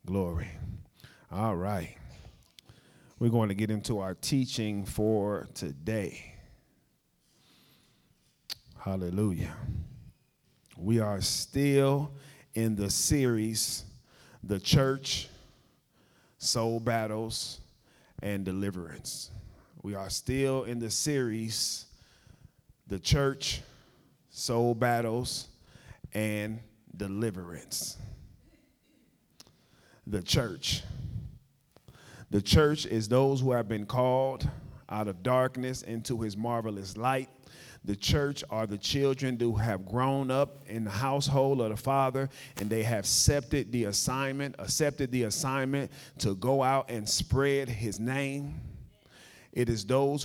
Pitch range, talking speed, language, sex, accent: 110-135 Hz, 105 wpm, English, male, American